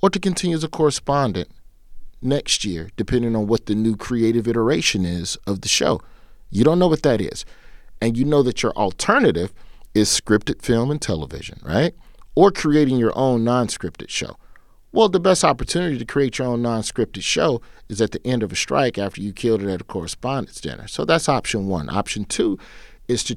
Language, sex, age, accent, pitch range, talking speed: English, male, 40-59, American, 100-140 Hz, 195 wpm